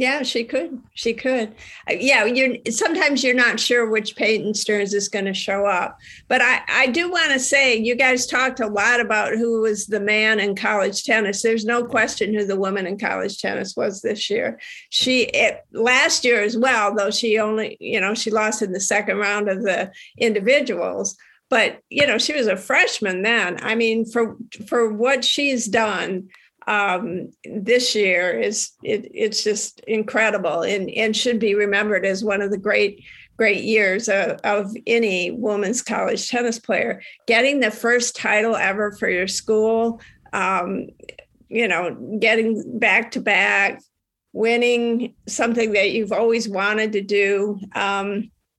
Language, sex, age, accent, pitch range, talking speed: English, female, 50-69, American, 205-235 Hz, 170 wpm